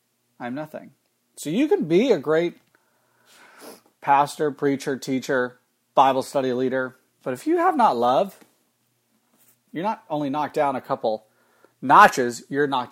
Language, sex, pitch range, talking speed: English, male, 120-140 Hz, 140 wpm